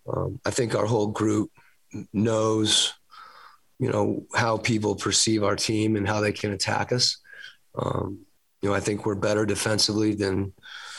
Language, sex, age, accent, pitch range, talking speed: English, male, 30-49, American, 105-115 Hz, 160 wpm